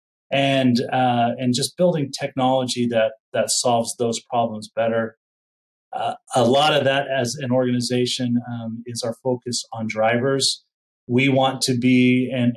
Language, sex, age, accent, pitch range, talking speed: English, male, 30-49, American, 120-130 Hz, 150 wpm